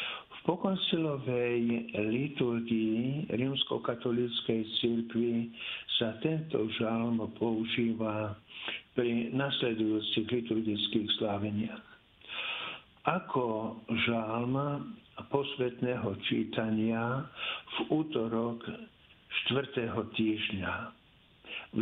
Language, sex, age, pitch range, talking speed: Slovak, male, 60-79, 110-130 Hz, 60 wpm